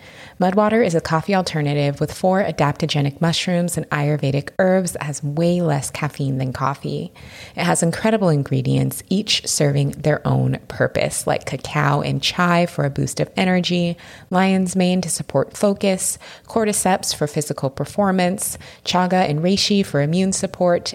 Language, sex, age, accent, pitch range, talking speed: English, female, 20-39, American, 145-185 Hz, 150 wpm